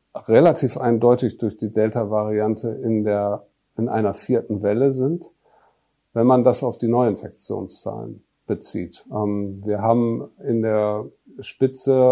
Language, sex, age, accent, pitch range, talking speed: German, male, 50-69, German, 110-125 Hz, 120 wpm